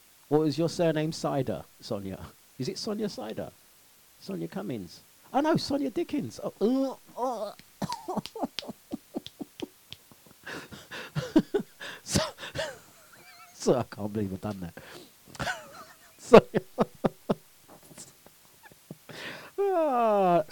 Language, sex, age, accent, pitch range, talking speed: English, male, 40-59, British, 135-225 Hz, 75 wpm